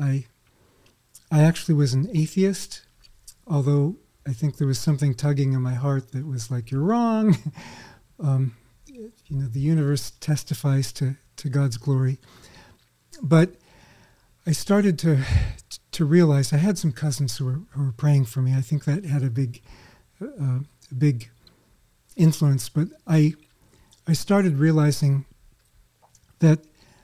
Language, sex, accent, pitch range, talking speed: English, male, American, 135-160 Hz, 140 wpm